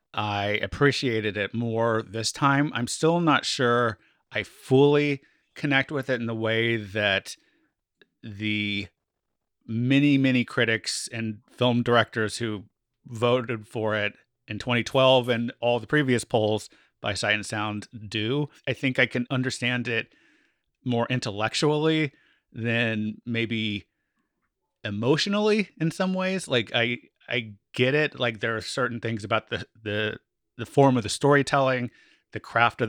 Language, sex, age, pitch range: English, male, 30-49, 110-130 Hz